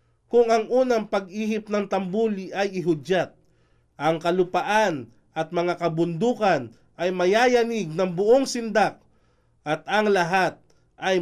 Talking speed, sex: 120 wpm, male